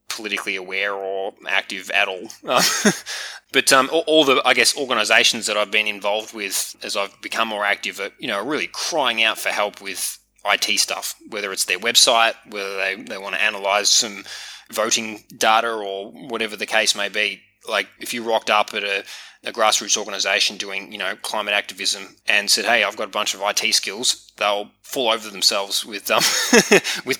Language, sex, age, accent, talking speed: English, male, 20-39, Australian, 190 wpm